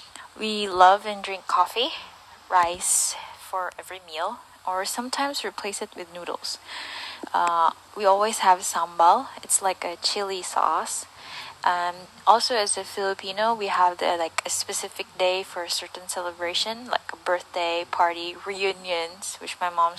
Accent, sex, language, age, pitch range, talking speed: Filipino, female, English, 20-39, 170-195 Hz, 145 wpm